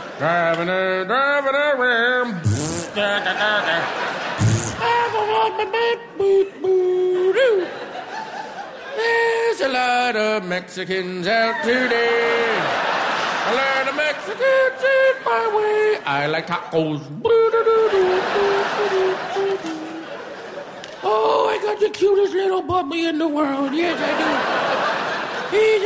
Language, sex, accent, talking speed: English, male, American, 85 wpm